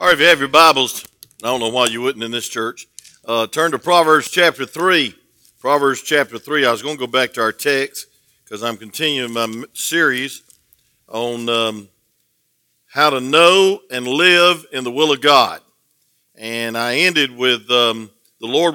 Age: 50-69